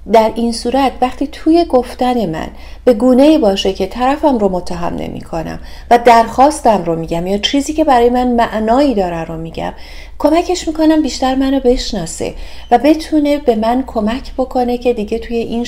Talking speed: 165 wpm